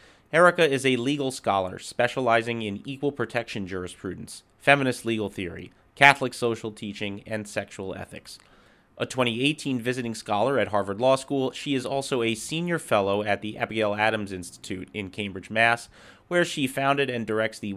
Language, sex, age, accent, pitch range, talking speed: English, male, 30-49, American, 100-125 Hz, 160 wpm